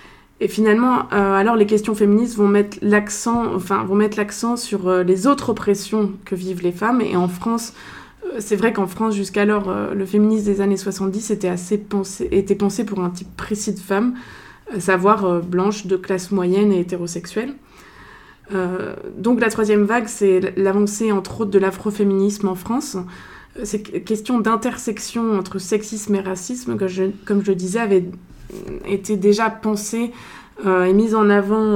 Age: 20-39